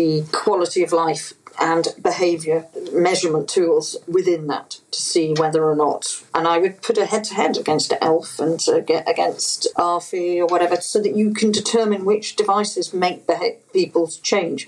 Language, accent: English, British